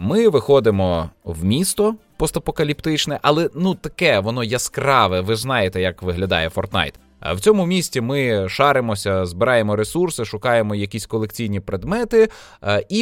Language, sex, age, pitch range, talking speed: Ukrainian, male, 20-39, 105-145 Hz, 125 wpm